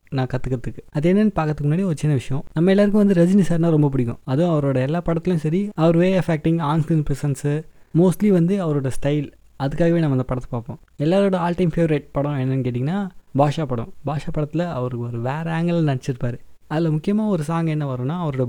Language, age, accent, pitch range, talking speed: Tamil, 20-39, native, 140-180 Hz, 190 wpm